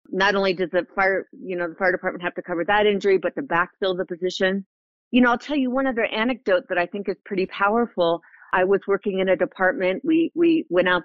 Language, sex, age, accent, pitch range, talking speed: English, female, 40-59, American, 180-220 Hz, 240 wpm